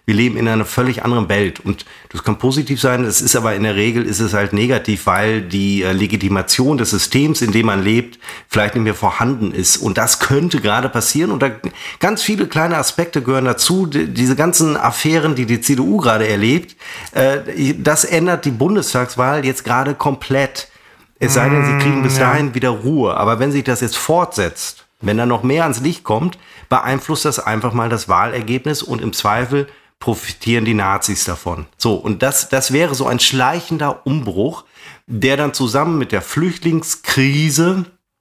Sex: male